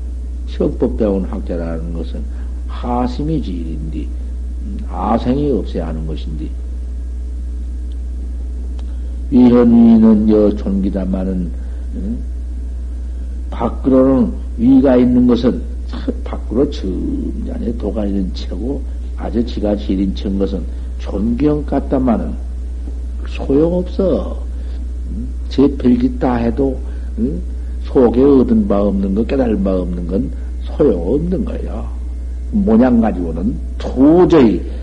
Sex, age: male, 60-79